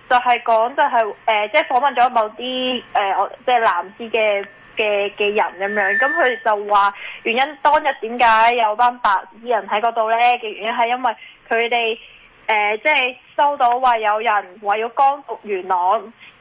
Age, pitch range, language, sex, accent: 20-39, 215-275 Hz, Chinese, female, native